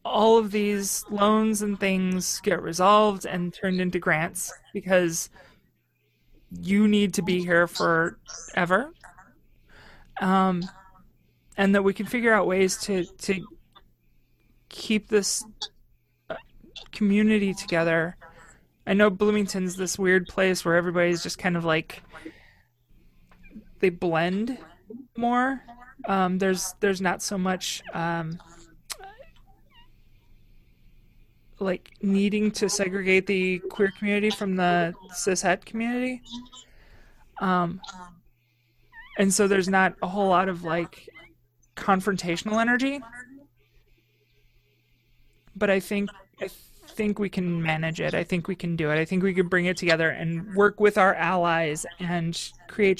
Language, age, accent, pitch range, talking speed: English, 30-49, American, 165-205 Hz, 120 wpm